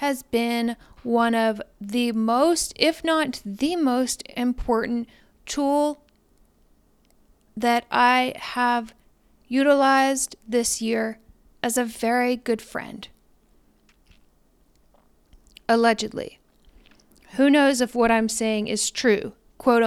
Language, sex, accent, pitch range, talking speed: English, female, American, 230-285 Hz, 100 wpm